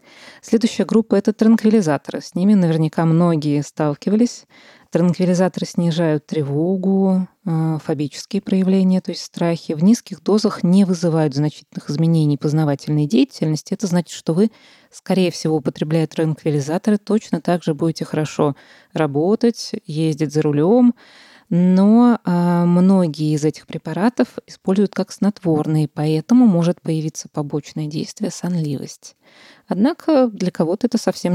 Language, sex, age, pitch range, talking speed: Russian, female, 20-39, 160-220 Hz, 120 wpm